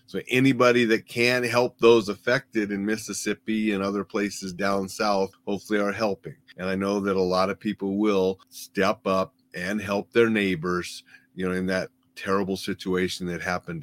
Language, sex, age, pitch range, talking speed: English, male, 40-59, 100-120 Hz, 175 wpm